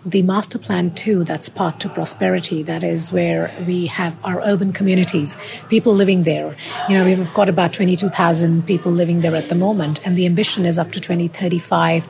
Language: English